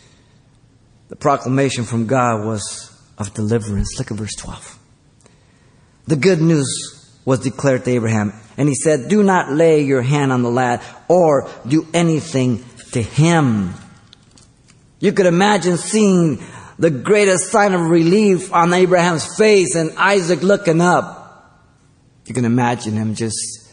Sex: male